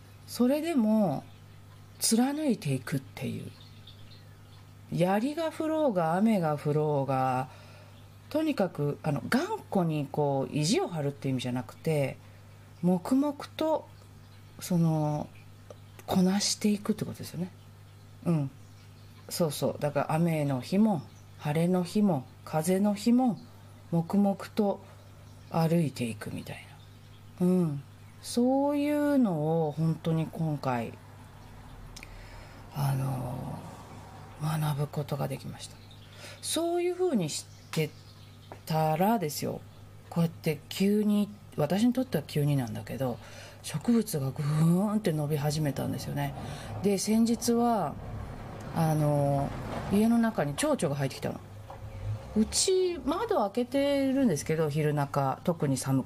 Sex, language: female, Japanese